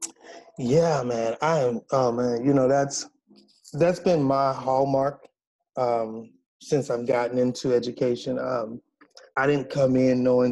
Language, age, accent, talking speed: English, 30-49, American, 150 wpm